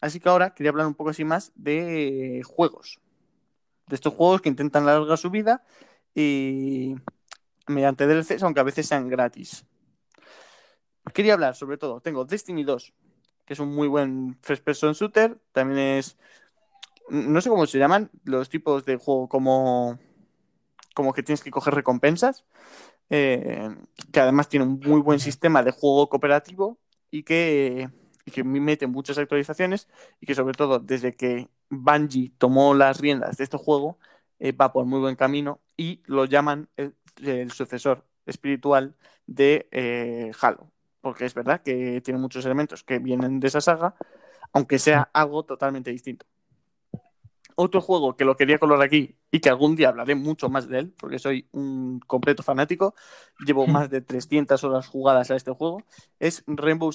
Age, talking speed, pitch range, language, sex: 20-39, 165 wpm, 130-155 Hz, Spanish, male